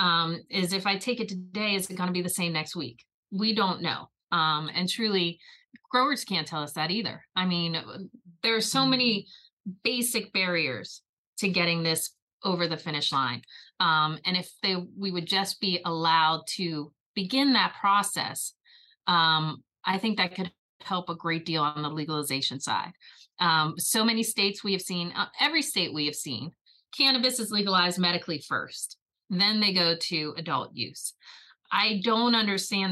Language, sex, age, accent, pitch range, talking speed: English, female, 30-49, American, 165-220 Hz, 170 wpm